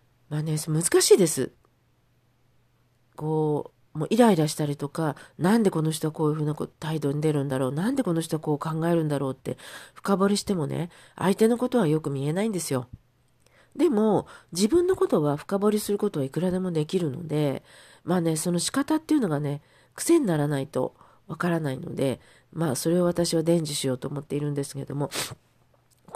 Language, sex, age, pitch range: Japanese, female, 40-59, 130-180 Hz